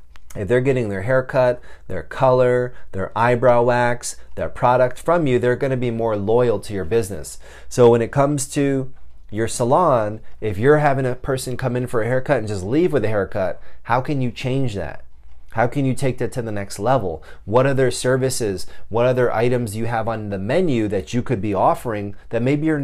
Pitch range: 95-130 Hz